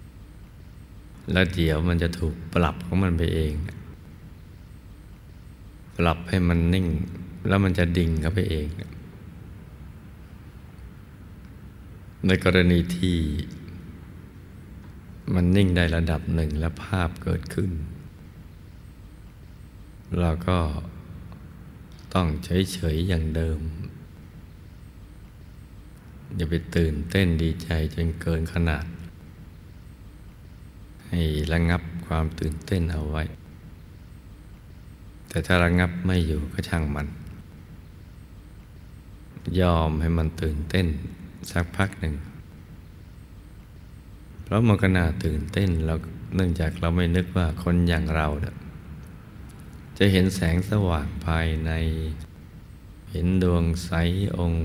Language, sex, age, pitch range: Thai, male, 60-79, 80-95 Hz